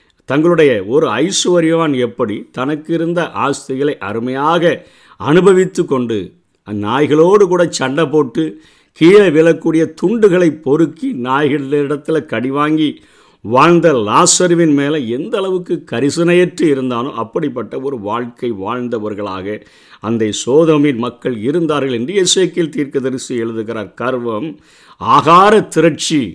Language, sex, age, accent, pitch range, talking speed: Tamil, male, 50-69, native, 115-155 Hz, 100 wpm